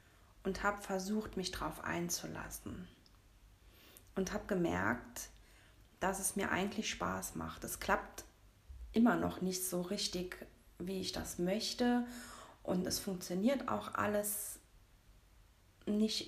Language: German